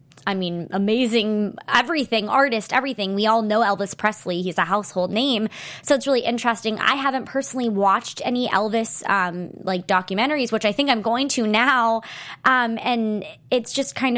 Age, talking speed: 20-39, 170 wpm